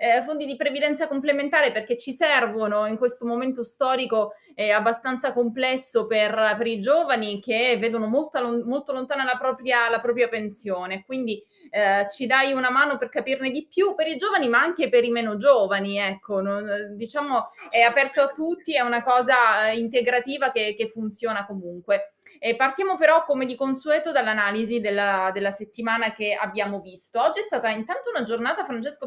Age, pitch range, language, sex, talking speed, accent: 20-39, 205-265 Hz, Italian, female, 170 wpm, native